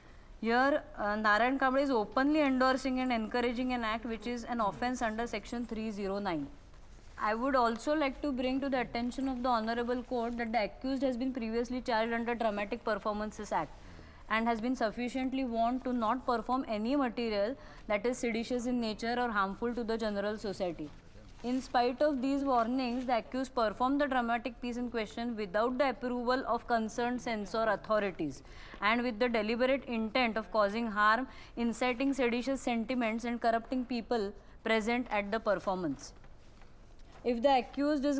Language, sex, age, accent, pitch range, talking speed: English, female, 20-39, Indian, 220-255 Hz, 165 wpm